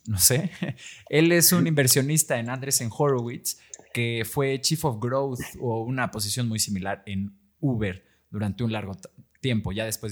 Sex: male